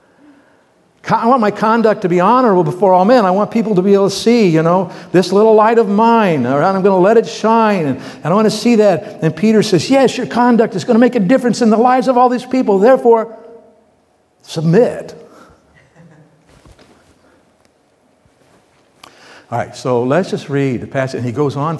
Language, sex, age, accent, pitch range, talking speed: English, male, 60-79, American, 130-210 Hz, 195 wpm